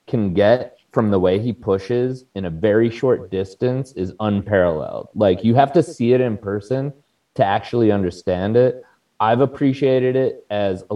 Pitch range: 95-125 Hz